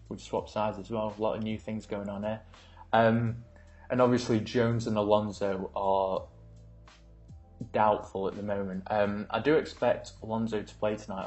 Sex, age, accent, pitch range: male, 20-39, British, 95-110 Hz